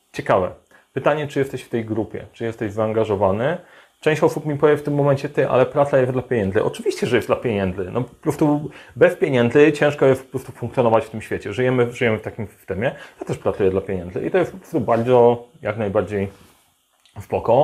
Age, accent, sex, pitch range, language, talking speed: 30-49, native, male, 110-140 Hz, Polish, 205 wpm